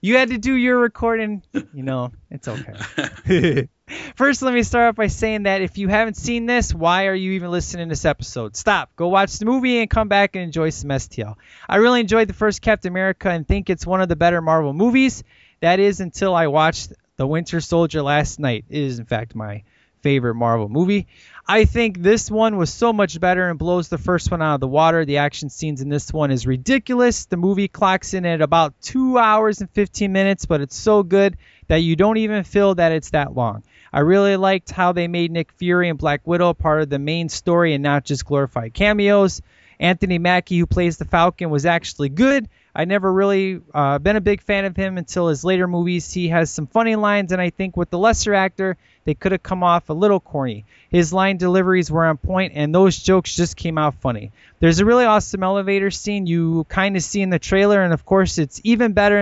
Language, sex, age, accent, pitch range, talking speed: English, male, 20-39, American, 155-200 Hz, 225 wpm